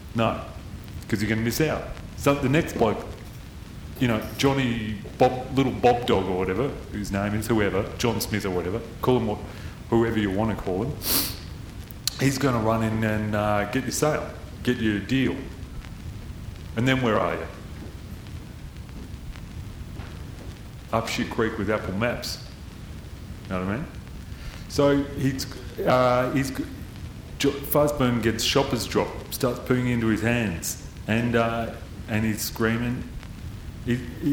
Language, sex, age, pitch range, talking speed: English, male, 30-49, 100-140 Hz, 150 wpm